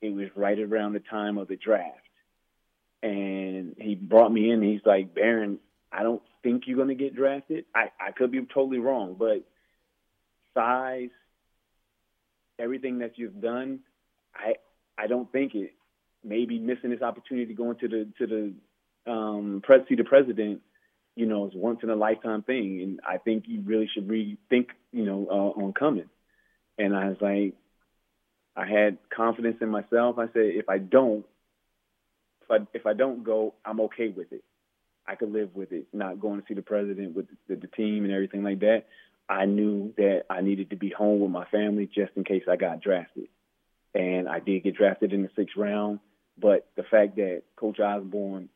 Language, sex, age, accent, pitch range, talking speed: English, male, 30-49, American, 100-115 Hz, 190 wpm